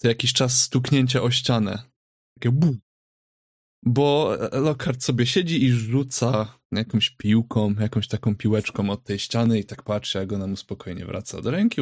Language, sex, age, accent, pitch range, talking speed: Polish, male, 20-39, native, 110-130 Hz, 150 wpm